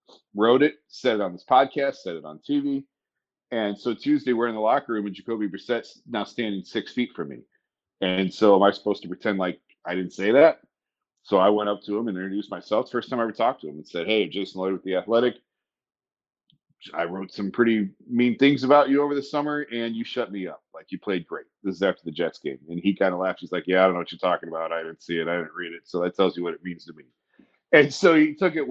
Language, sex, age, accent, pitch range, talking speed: English, male, 40-59, American, 95-130 Hz, 265 wpm